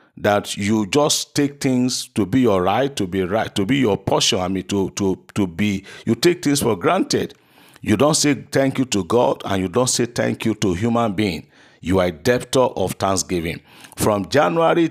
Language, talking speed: English, 205 wpm